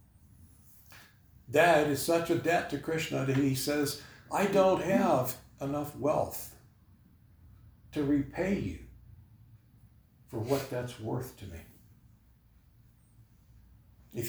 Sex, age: male, 60-79